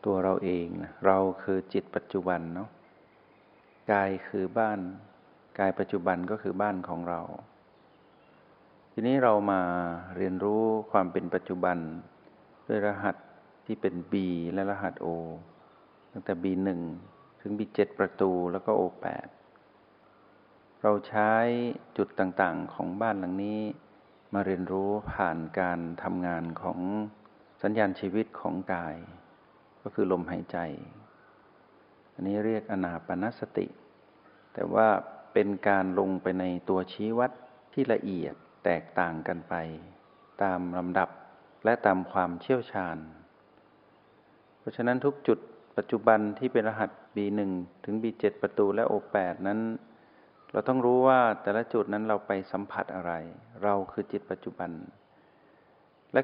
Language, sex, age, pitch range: Thai, male, 60-79, 90-105 Hz